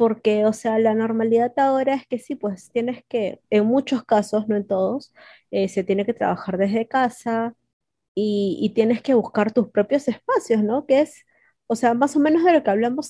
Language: Spanish